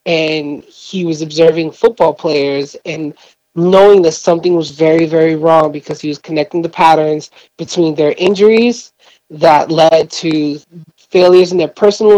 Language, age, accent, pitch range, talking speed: English, 30-49, American, 155-180 Hz, 150 wpm